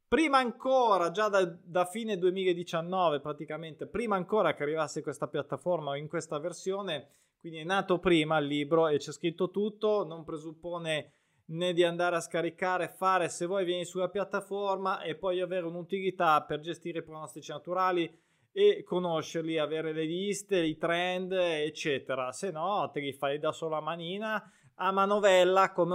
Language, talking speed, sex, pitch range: Italian, 160 wpm, male, 150-185 Hz